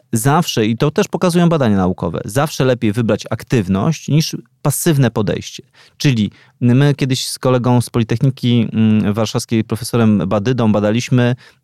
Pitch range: 125-160 Hz